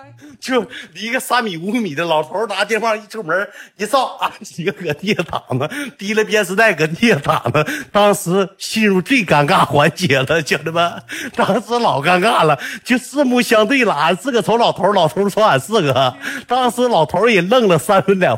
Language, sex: Chinese, male